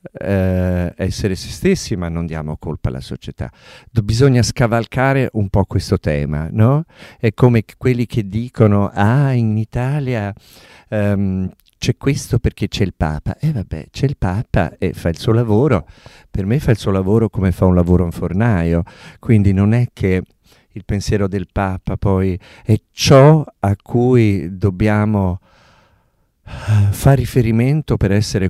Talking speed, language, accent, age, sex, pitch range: 155 wpm, Italian, native, 50-69, male, 90-115 Hz